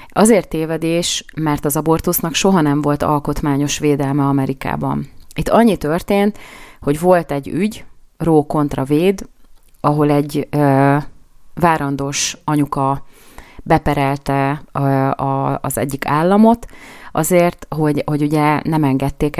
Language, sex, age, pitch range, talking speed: Hungarian, female, 30-49, 140-155 Hz, 115 wpm